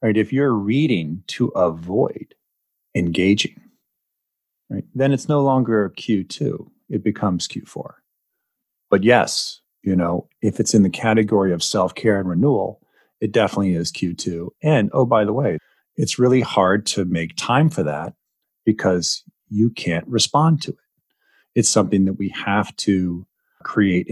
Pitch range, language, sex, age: 90-120 Hz, English, male, 40-59